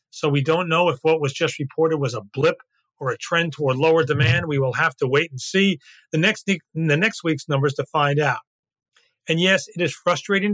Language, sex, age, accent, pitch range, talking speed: English, male, 40-59, American, 140-190 Hz, 220 wpm